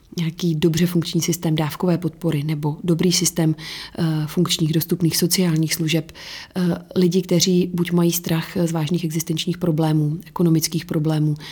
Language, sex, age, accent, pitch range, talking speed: Czech, female, 30-49, native, 155-170 Hz, 125 wpm